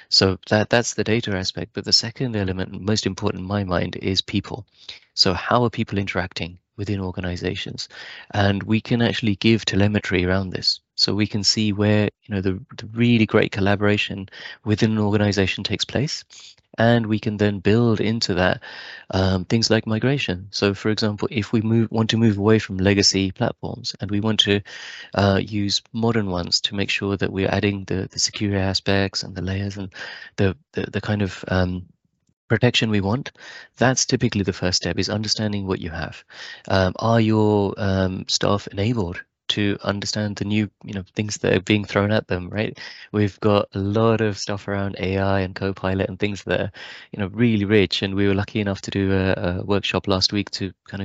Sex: male